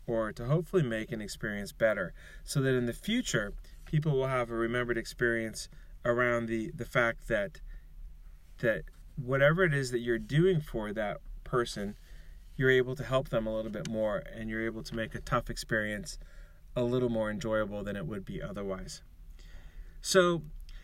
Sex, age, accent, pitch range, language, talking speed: male, 30-49, American, 110-140 Hz, English, 175 wpm